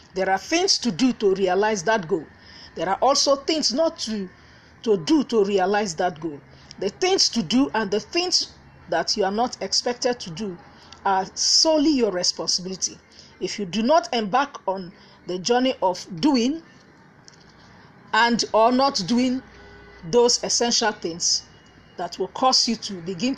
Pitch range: 195-265 Hz